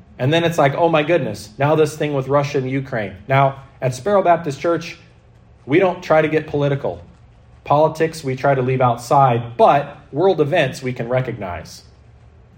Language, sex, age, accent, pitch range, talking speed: English, male, 40-59, American, 130-160 Hz, 175 wpm